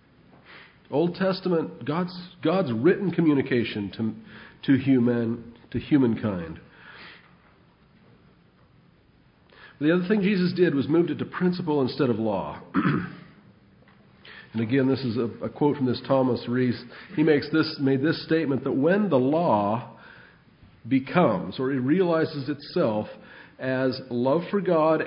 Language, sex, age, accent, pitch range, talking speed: English, male, 50-69, American, 125-165 Hz, 130 wpm